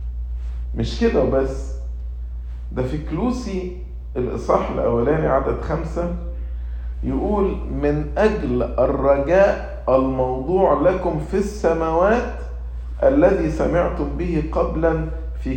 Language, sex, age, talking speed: English, male, 50-69, 90 wpm